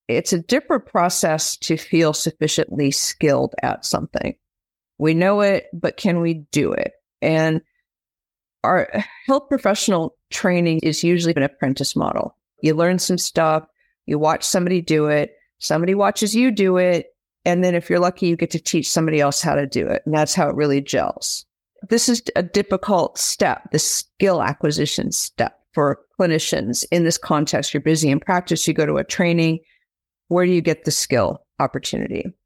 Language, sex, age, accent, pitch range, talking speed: English, female, 50-69, American, 155-185 Hz, 170 wpm